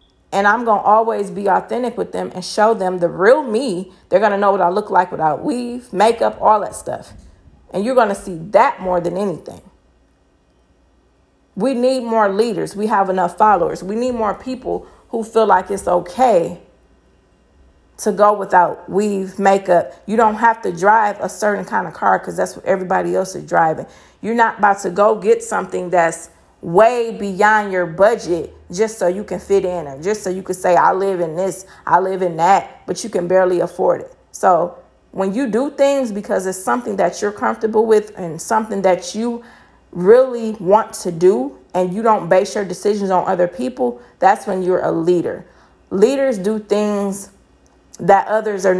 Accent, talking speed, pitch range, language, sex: American, 190 wpm, 180-220 Hz, English, female